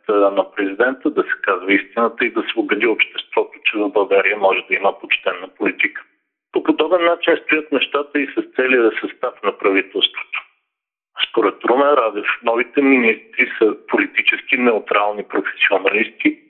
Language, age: Bulgarian, 50-69